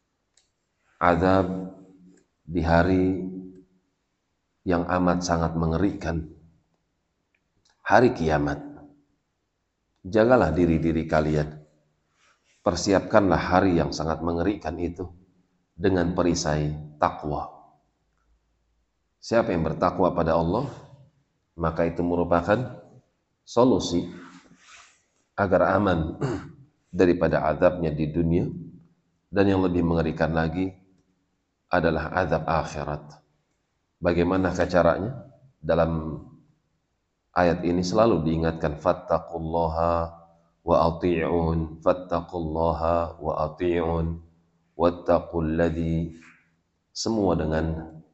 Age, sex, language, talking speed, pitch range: 40-59, male, Indonesian, 75 wpm, 80-95 Hz